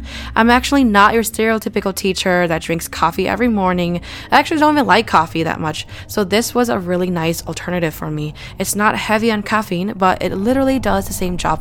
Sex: female